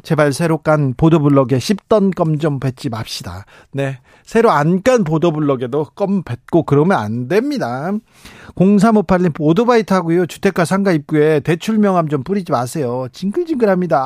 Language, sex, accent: Korean, male, native